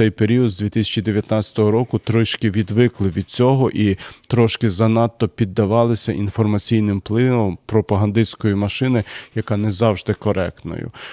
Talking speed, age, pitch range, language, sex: 110 wpm, 40-59, 110-125 Hz, Ukrainian, male